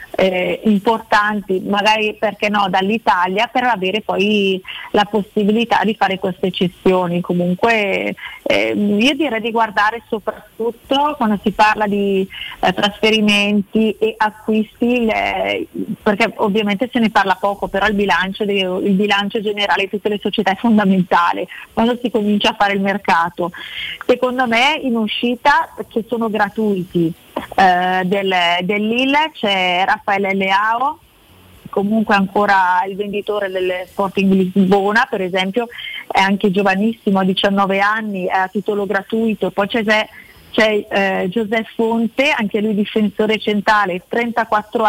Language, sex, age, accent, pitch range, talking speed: Italian, female, 30-49, native, 195-225 Hz, 130 wpm